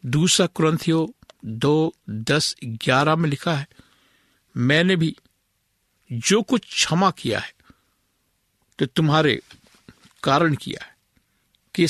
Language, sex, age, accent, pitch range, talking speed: Hindi, male, 60-79, native, 130-165 Hz, 110 wpm